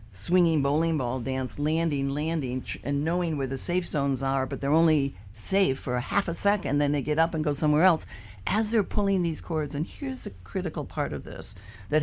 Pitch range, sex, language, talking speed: 110-155 Hz, female, English, 215 wpm